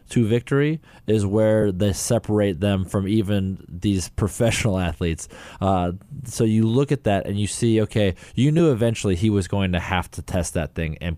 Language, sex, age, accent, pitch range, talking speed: English, male, 20-39, American, 90-110 Hz, 190 wpm